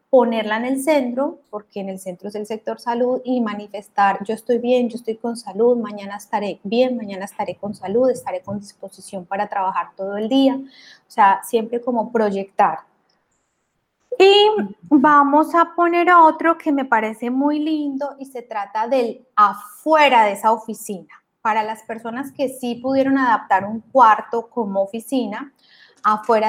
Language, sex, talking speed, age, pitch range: Spanish, female, 160 wpm, 20-39, 205-265 Hz